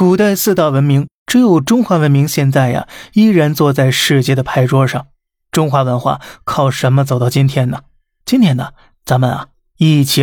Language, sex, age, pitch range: Chinese, male, 20-39, 135-170 Hz